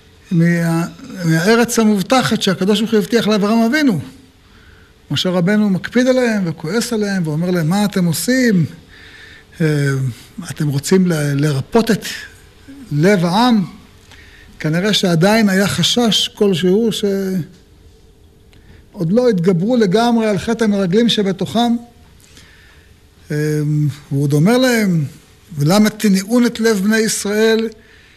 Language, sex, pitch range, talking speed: Hebrew, male, 160-220 Hz, 105 wpm